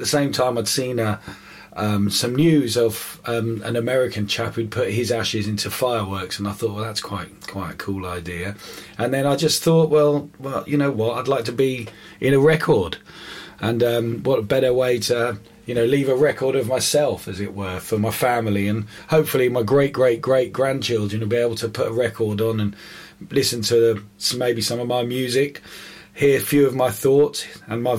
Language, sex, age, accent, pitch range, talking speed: English, male, 30-49, British, 105-130 Hz, 215 wpm